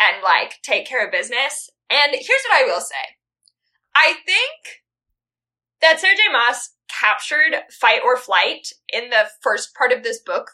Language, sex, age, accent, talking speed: English, female, 10-29, American, 160 wpm